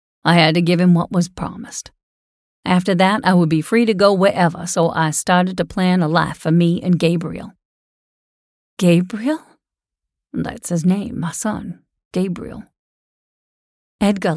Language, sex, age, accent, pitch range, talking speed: English, female, 40-59, American, 175-230 Hz, 150 wpm